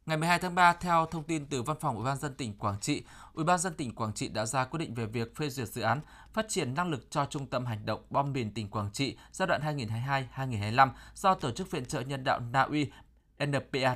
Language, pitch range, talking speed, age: Vietnamese, 120-155 Hz, 255 wpm, 20-39